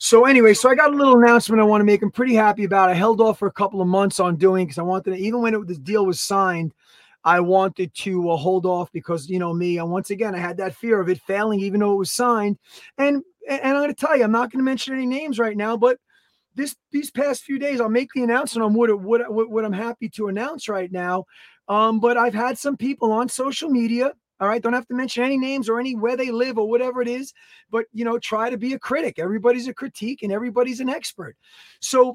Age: 30-49